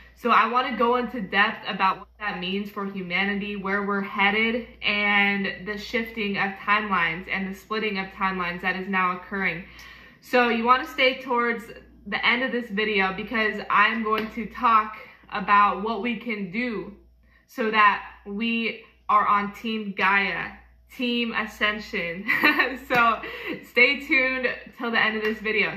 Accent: American